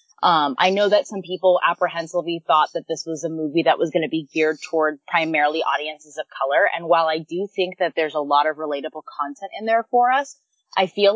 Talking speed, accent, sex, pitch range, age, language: 225 wpm, American, female, 155-190 Hz, 20-39, English